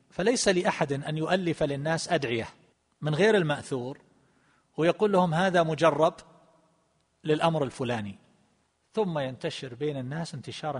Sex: male